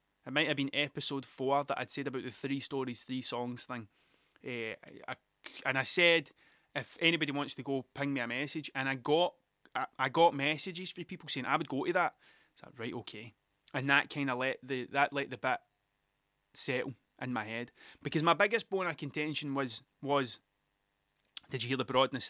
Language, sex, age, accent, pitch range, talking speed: English, male, 20-39, British, 130-150 Hz, 215 wpm